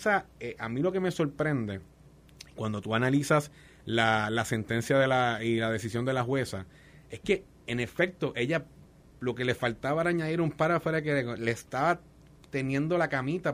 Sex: male